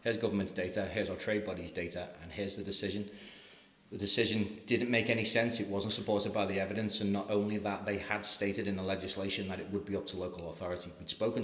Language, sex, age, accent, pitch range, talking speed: English, male, 30-49, British, 90-105 Hz, 230 wpm